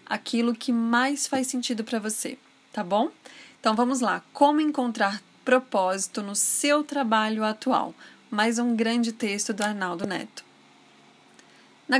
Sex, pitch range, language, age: female, 215-265 Hz, Portuguese, 20-39